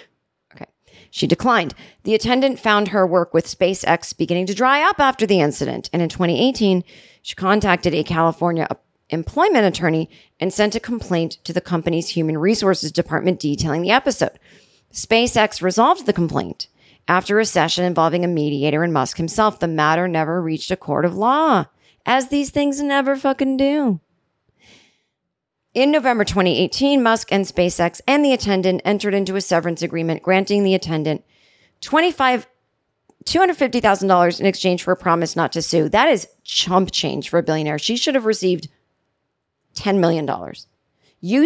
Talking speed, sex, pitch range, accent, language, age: 150 wpm, female, 165-225 Hz, American, English, 40-59